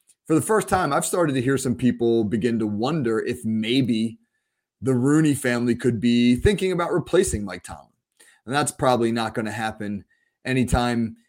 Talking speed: 175 wpm